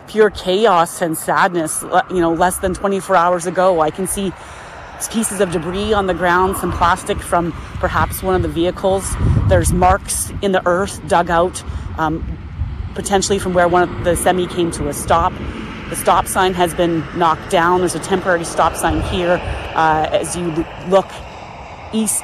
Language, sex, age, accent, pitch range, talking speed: English, female, 30-49, American, 160-185 Hz, 175 wpm